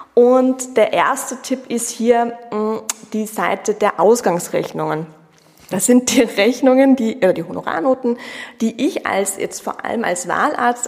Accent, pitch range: German, 195-245 Hz